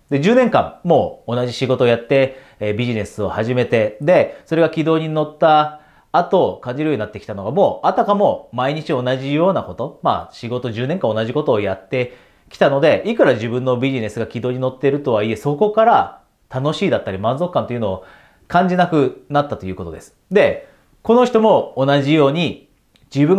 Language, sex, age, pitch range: Japanese, male, 30-49, 120-165 Hz